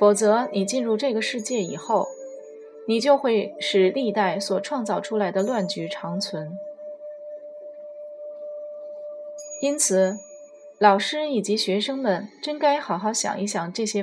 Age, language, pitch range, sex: 20-39, Chinese, 195-275 Hz, female